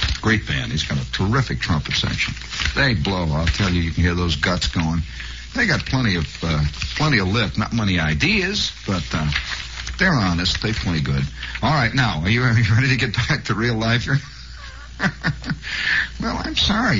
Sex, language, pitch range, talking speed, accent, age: male, English, 70-115 Hz, 185 wpm, American, 60-79